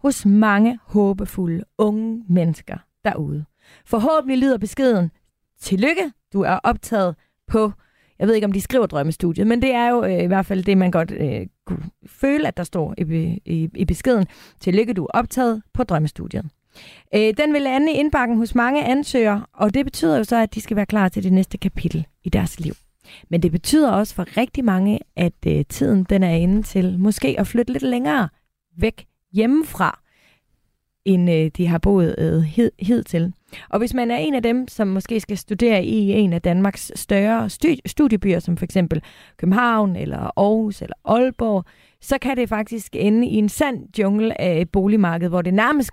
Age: 30-49